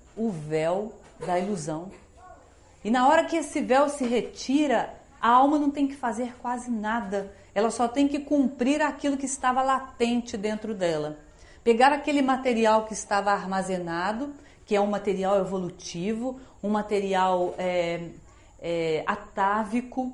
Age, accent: 40-59, Brazilian